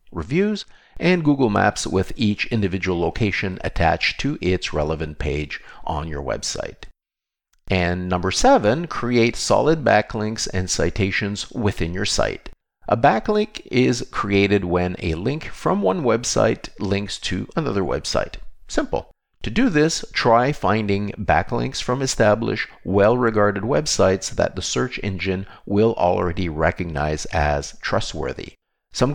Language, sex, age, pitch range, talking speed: English, male, 50-69, 90-120 Hz, 130 wpm